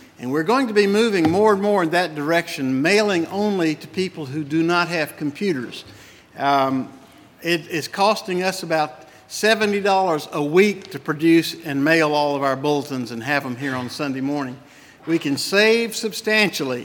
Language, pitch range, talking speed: English, 140-185 Hz, 170 wpm